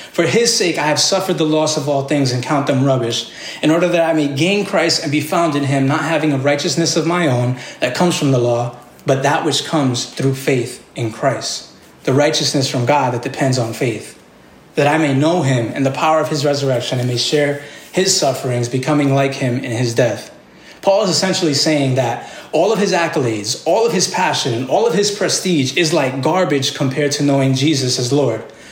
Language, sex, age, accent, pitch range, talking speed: English, male, 20-39, American, 130-165 Hz, 215 wpm